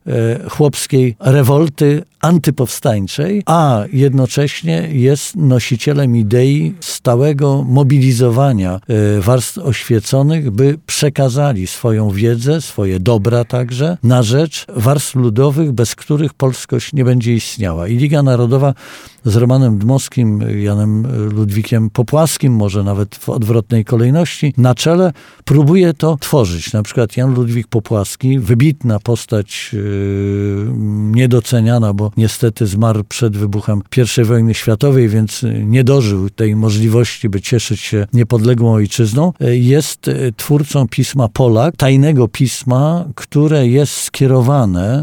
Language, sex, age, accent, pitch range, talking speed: Polish, male, 50-69, native, 115-145 Hz, 110 wpm